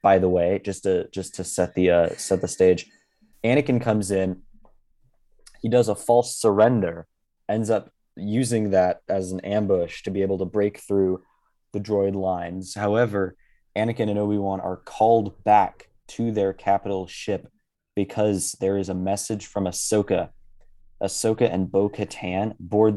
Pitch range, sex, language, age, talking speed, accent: 90-105 Hz, male, English, 20-39, 155 wpm, American